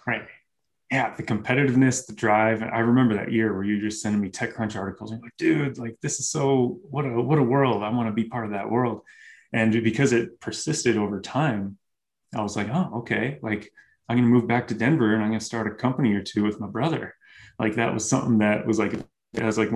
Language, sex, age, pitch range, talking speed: English, male, 20-39, 100-120 Hz, 245 wpm